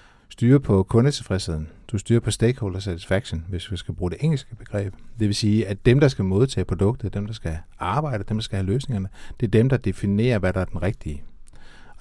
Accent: native